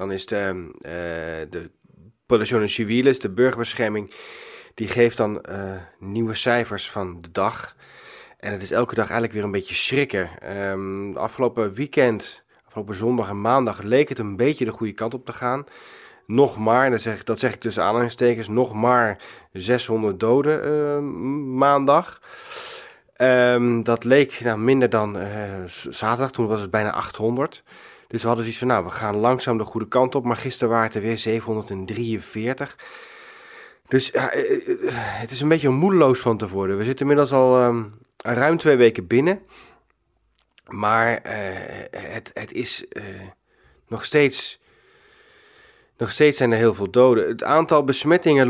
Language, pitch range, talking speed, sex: Dutch, 110-140 Hz, 160 wpm, male